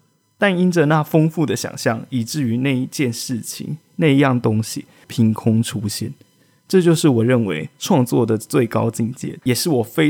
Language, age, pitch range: Chinese, 20-39, 120-165 Hz